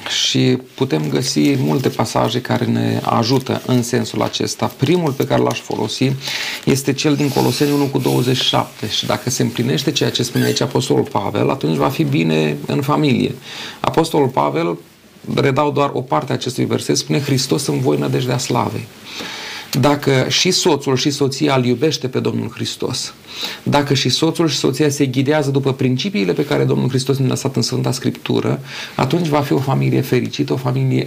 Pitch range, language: 115-150 Hz, Romanian